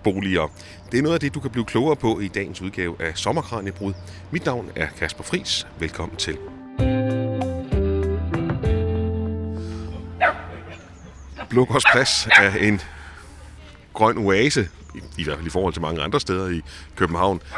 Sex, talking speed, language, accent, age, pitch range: male, 125 wpm, Danish, native, 30-49, 80-105 Hz